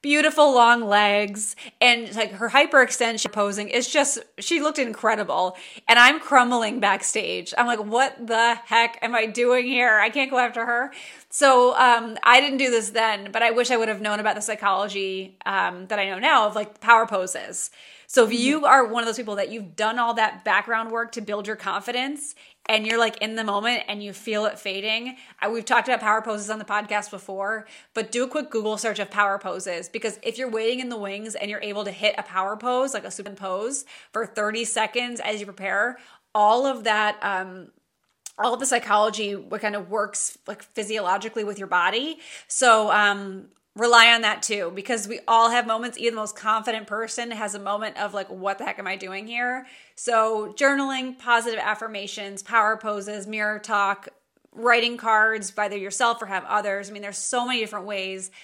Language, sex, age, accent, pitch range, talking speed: English, female, 30-49, American, 205-240 Hz, 200 wpm